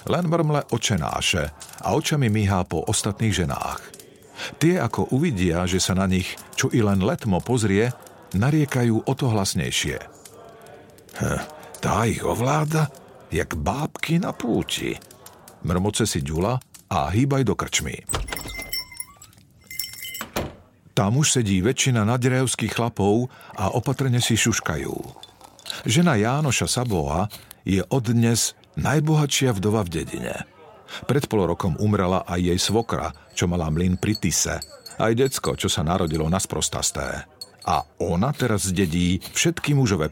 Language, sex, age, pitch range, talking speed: Slovak, male, 50-69, 95-130 Hz, 125 wpm